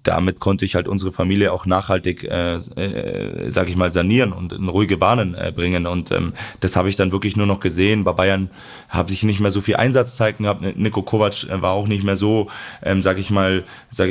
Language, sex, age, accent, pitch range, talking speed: German, male, 30-49, German, 95-110 Hz, 215 wpm